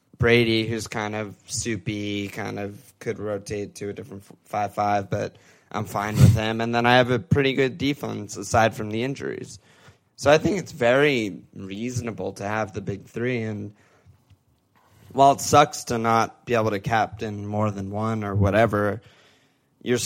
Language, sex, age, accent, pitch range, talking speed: English, male, 20-39, American, 105-125 Hz, 170 wpm